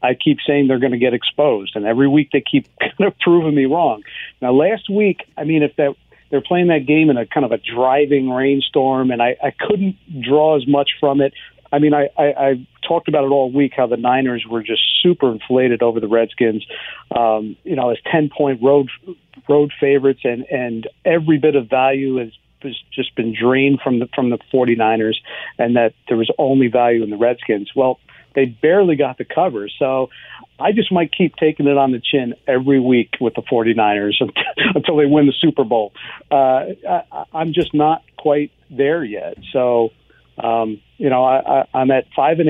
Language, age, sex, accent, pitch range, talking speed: English, 50-69, male, American, 120-145 Hz, 205 wpm